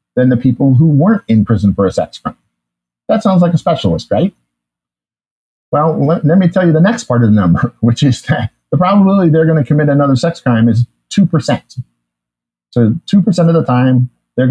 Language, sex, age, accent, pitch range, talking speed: English, male, 50-69, American, 115-155 Hz, 210 wpm